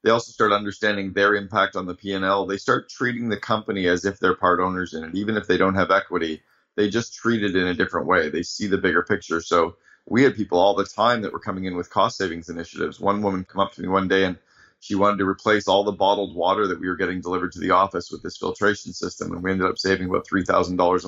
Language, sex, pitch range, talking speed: English, male, 90-100 Hz, 260 wpm